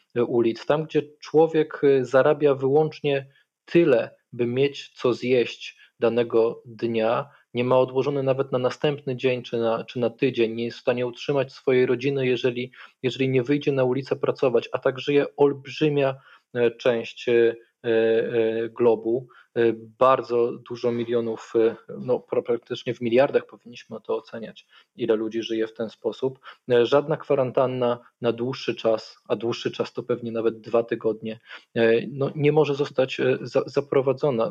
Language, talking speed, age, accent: Polish, 135 wpm, 20-39, native